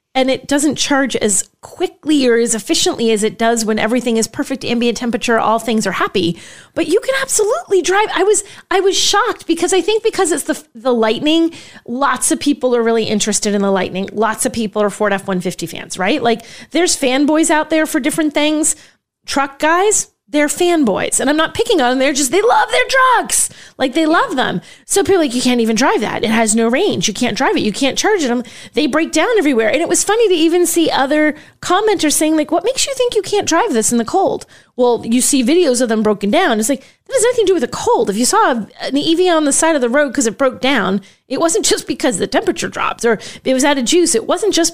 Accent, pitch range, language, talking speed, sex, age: American, 230-340 Hz, English, 245 wpm, female, 30-49